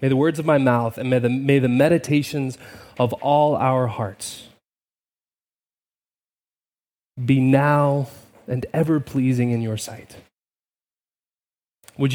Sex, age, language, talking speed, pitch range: male, 20-39, English, 115 wpm, 125-155 Hz